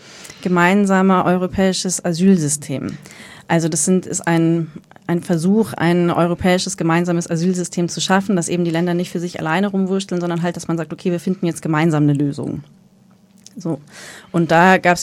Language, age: German, 30-49